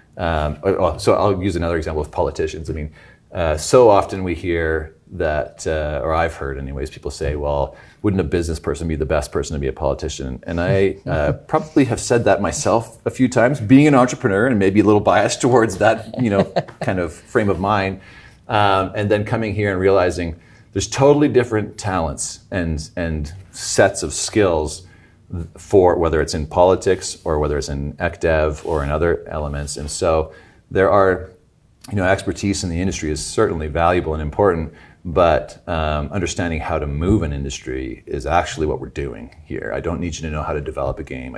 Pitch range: 75-100 Hz